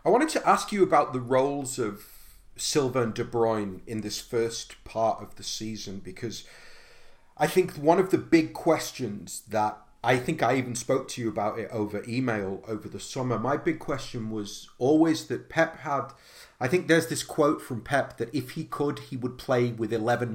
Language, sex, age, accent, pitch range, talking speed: English, male, 30-49, British, 110-140 Hz, 200 wpm